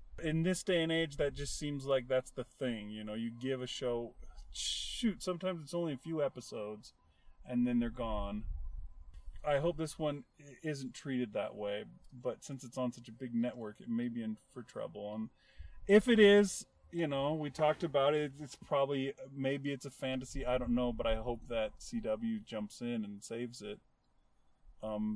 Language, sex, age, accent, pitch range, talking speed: English, male, 30-49, American, 115-150 Hz, 195 wpm